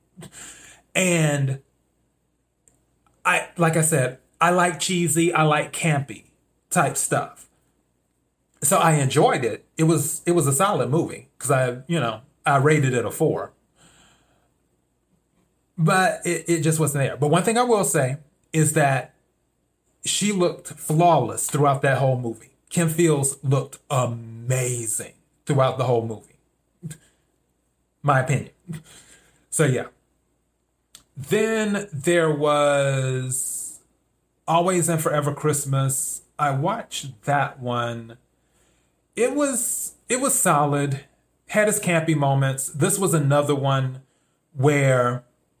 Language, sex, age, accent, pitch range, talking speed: English, male, 30-49, American, 130-165 Hz, 120 wpm